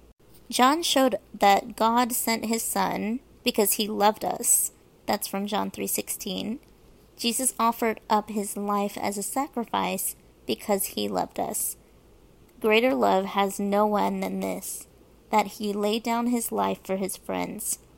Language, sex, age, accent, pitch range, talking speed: English, female, 30-49, American, 185-230 Hz, 145 wpm